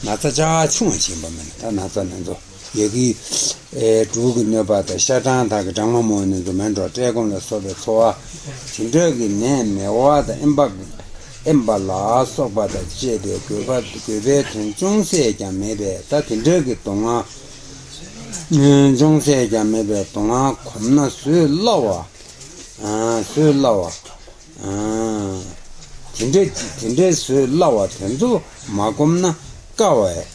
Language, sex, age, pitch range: Italian, male, 60-79, 100-140 Hz